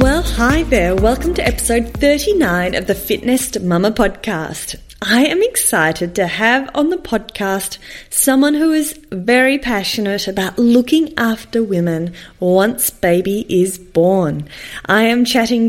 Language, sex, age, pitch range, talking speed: English, female, 20-39, 185-255 Hz, 140 wpm